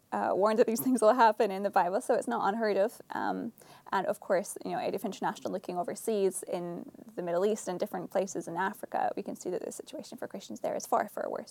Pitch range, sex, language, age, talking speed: 205-260 Hz, female, English, 10-29, 250 wpm